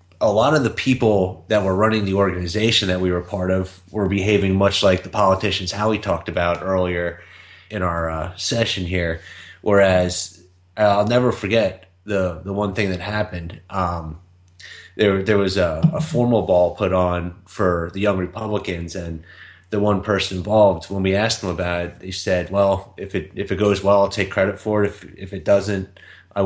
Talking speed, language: 195 wpm, English